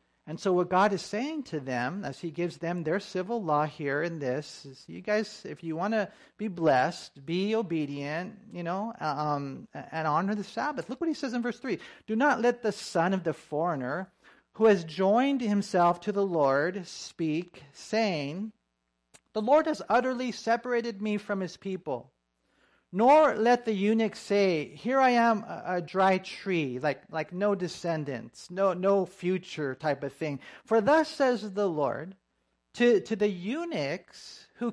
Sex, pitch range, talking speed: male, 160-225 Hz, 175 wpm